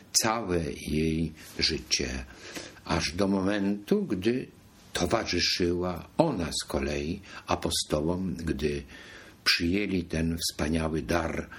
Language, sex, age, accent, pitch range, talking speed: Polish, male, 60-79, native, 80-130 Hz, 90 wpm